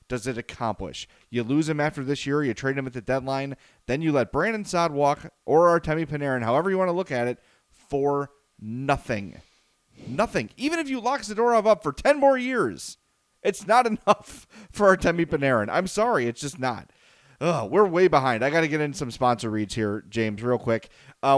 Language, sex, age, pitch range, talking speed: English, male, 30-49, 120-160 Hz, 200 wpm